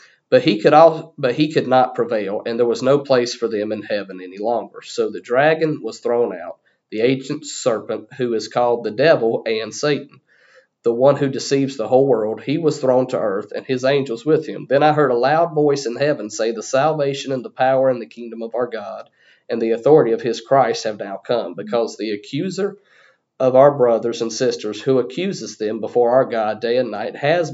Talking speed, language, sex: 220 wpm, English, male